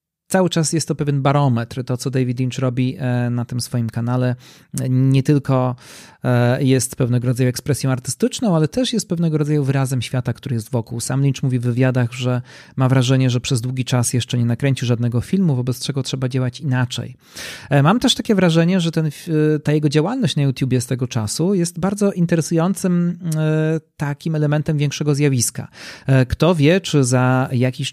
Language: Polish